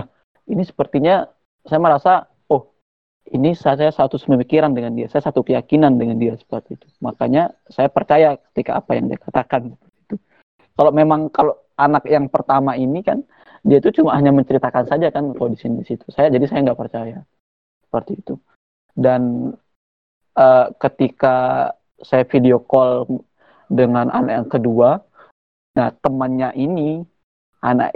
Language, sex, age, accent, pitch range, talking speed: Indonesian, male, 30-49, native, 120-150 Hz, 145 wpm